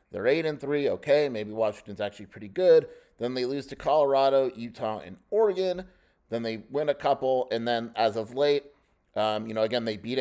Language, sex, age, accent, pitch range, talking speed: English, male, 30-49, American, 110-135 Hz, 200 wpm